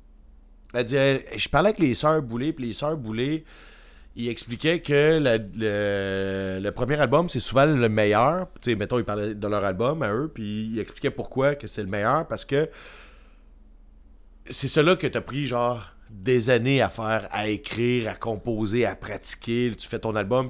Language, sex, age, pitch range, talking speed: French, male, 30-49, 115-170 Hz, 190 wpm